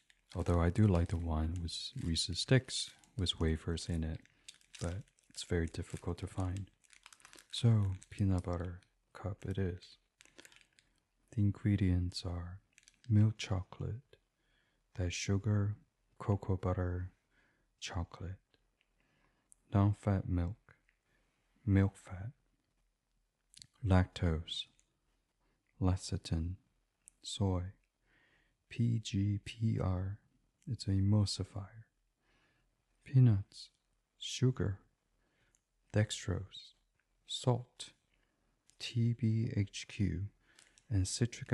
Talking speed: 80 wpm